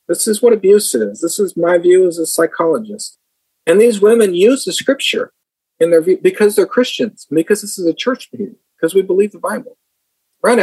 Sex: male